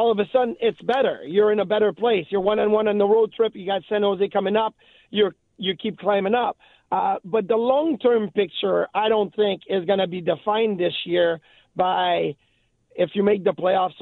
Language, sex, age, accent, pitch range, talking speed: English, male, 40-59, American, 190-225 Hz, 225 wpm